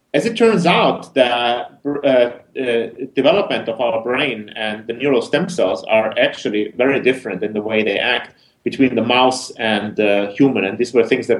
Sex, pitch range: male, 110-140 Hz